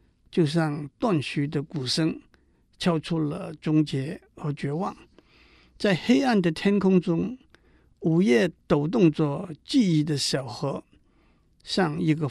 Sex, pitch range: male, 150-185 Hz